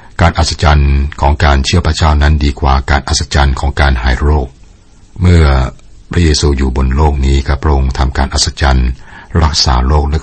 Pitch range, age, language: 65-85 Hz, 60-79, Thai